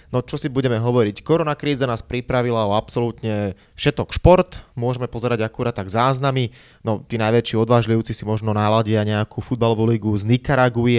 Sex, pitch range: male, 110-140 Hz